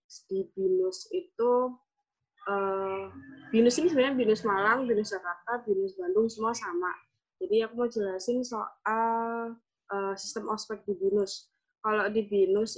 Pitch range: 185-230 Hz